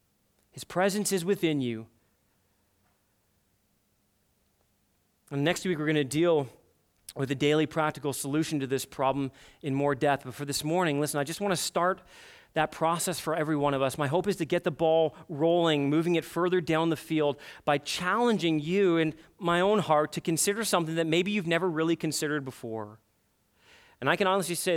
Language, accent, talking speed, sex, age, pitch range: English, American, 185 wpm, male, 30-49, 115-160 Hz